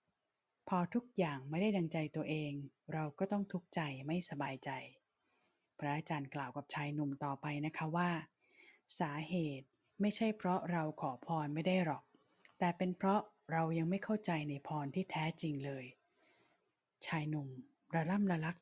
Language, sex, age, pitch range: Thai, female, 20-39, 145-180 Hz